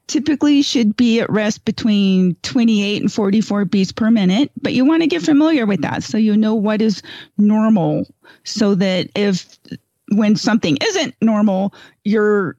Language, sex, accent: English, female, American